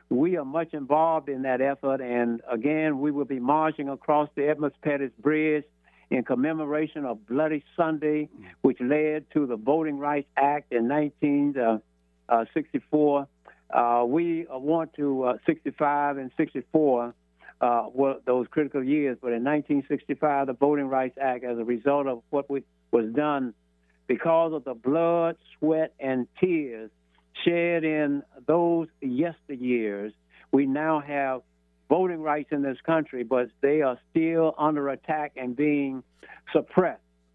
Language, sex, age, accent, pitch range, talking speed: English, male, 60-79, American, 125-155 Hz, 140 wpm